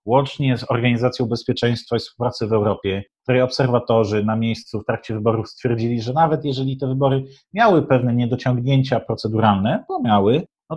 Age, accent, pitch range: 30-49, native, 120-145 Hz